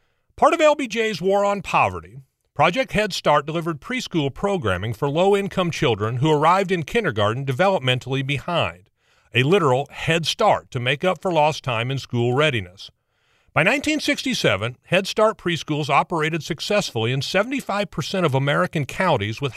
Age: 40-59